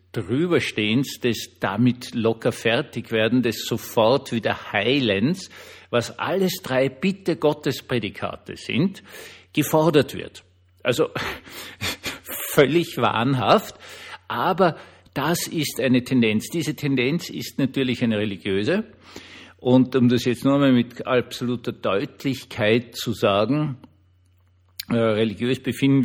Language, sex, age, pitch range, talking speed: German, male, 50-69, 110-130 Hz, 100 wpm